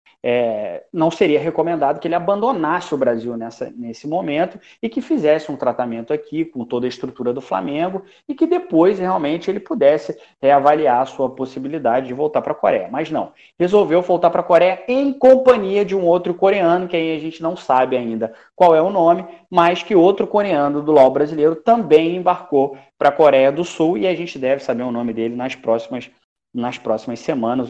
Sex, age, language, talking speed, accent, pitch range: male, 20-39, Portuguese, 195 wpm, Brazilian, 130-195 Hz